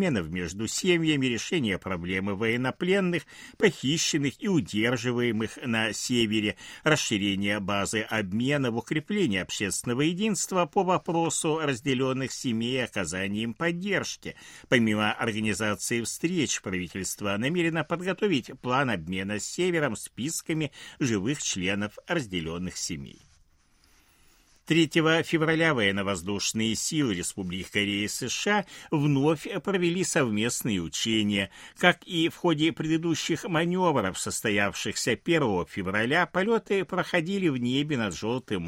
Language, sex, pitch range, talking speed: Russian, male, 100-160 Hz, 100 wpm